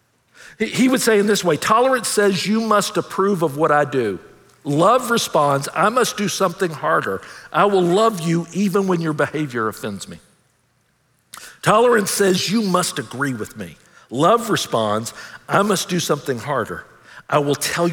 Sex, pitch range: male, 130-195 Hz